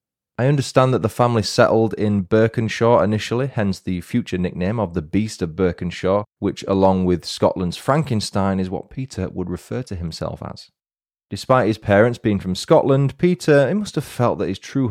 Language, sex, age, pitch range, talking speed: English, male, 20-39, 95-120 Hz, 180 wpm